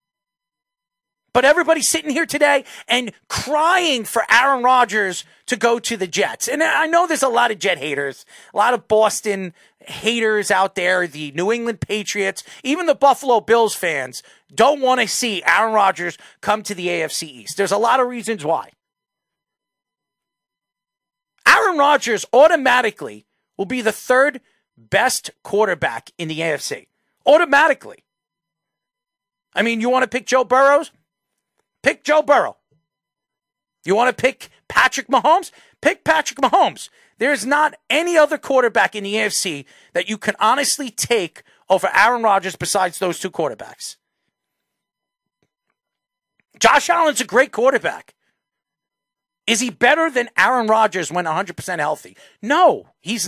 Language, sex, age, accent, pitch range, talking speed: English, male, 40-59, American, 185-275 Hz, 140 wpm